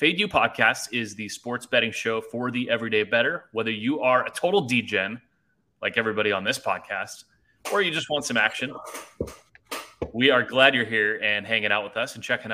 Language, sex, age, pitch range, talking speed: English, male, 30-49, 105-130 Hz, 195 wpm